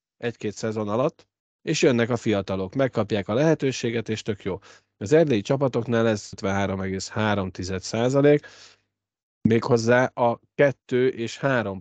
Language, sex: Hungarian, male